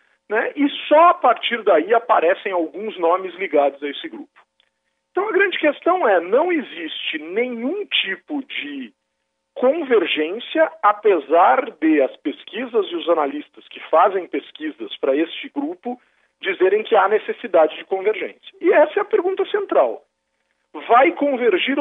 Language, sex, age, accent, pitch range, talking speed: Portuguese, male, 40-59, Brazilian, 225-370 Hz, 140 wpm